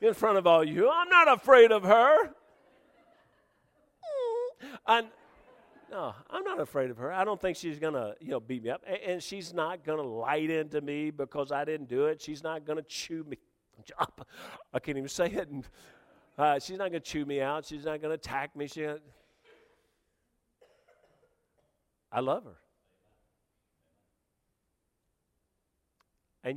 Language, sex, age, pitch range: English, male, 50-69, 125-165 Hz